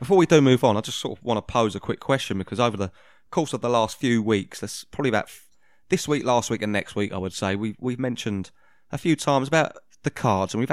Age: 20-39